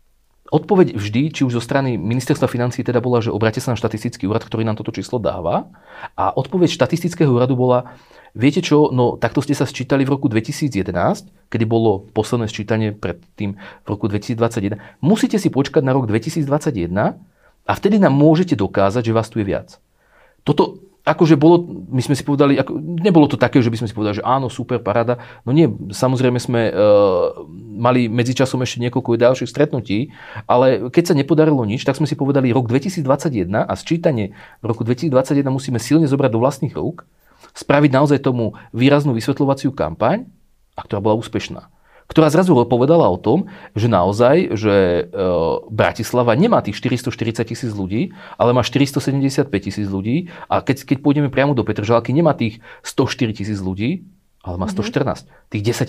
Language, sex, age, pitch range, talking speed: Slovak, male, 40-59, 110-145 Hz, 170 wpm